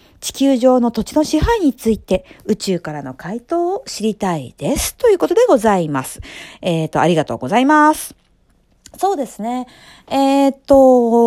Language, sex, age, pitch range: Japanese, female, 50-69, 200-315 Hz